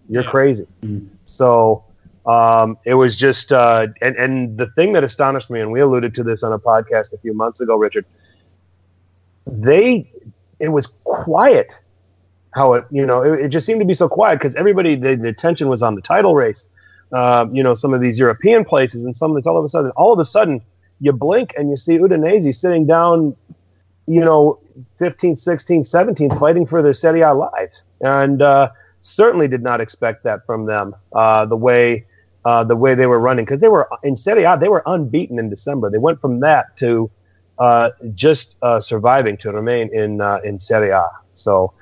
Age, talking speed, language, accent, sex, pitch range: 30-49, 200 wpm, English, American, male, 105-145 Hz